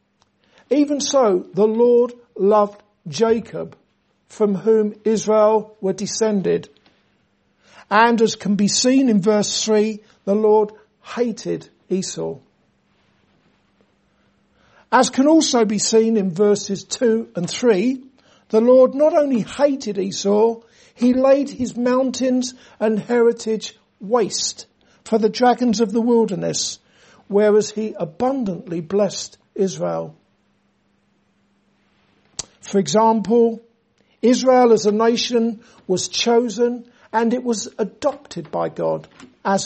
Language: English